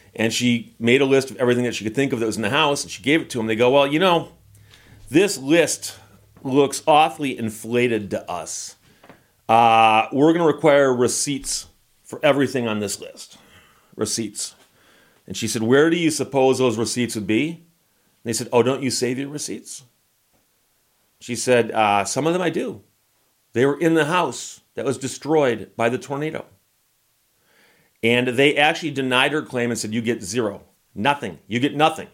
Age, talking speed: 40-59, 190 wpm